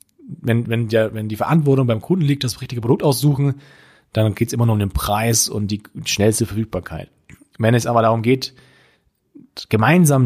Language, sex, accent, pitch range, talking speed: German, male, German, 105-140 Hz, 180 wpm